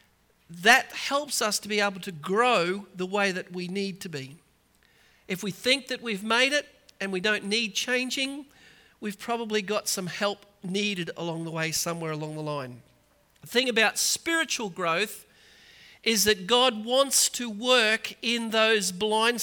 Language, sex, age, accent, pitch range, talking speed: English, male, 40-59, Australian, 205-245 Hz, 165 wpm